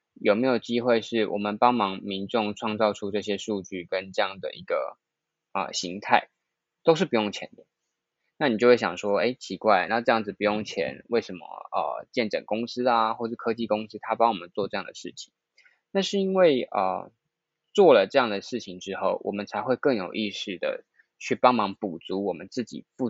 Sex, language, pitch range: male, Chinese, 100-130 Hz